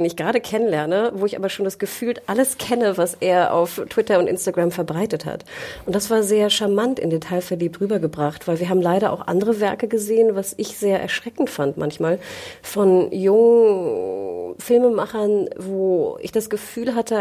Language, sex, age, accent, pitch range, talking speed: German, female, 30-49, German, 175-210 Hz, 170 wpm